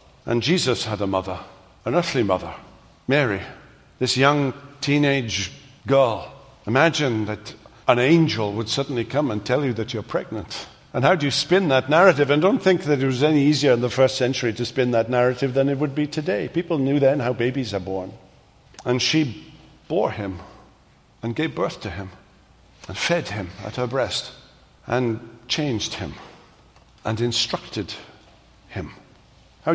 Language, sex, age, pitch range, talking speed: English, male, 50-69, 120-150 Hz, 165 wpm